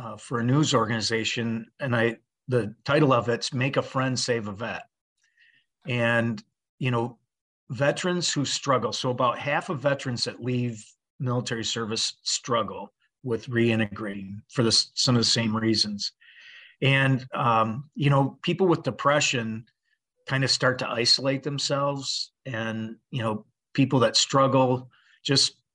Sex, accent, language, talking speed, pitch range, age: male, American, English, 140 wpm, 115-140 Hz, 40-59